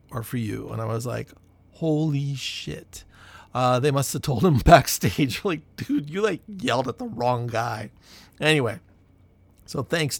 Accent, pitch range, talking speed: American, 115-150 Hz, 160 wpm